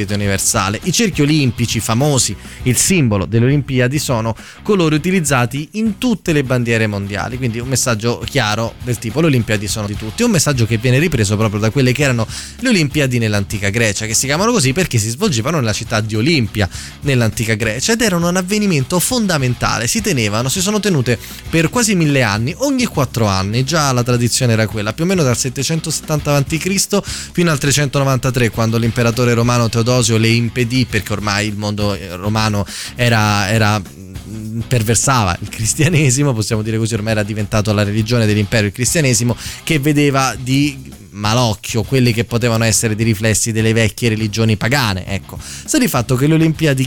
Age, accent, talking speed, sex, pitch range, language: 20-39, native, 170 wpm, male, 110-145 Hz, Italian